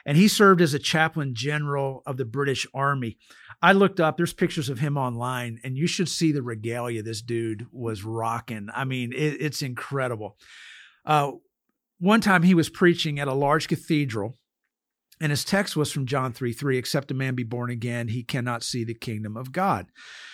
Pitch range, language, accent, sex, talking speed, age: 120-160 Hz, English, American, male, 190 wpm, 50-69